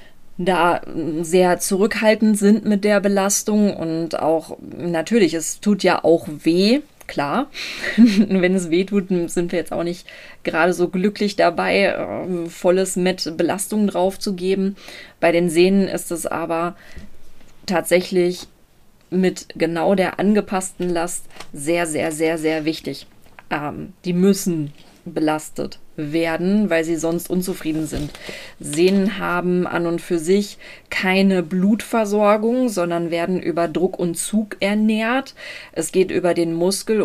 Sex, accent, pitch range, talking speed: female, German, 165-200 Hz, 130 wpm